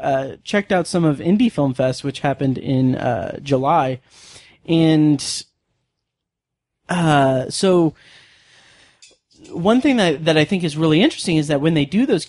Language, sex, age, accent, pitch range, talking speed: English, male, 20-39, American, 140-170 Hz, 150 wpm